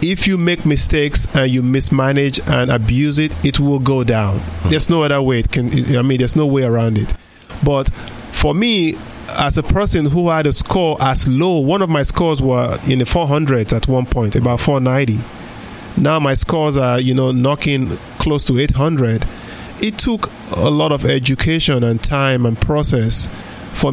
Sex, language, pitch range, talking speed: male, English, 125-150 Hz, 180 wpm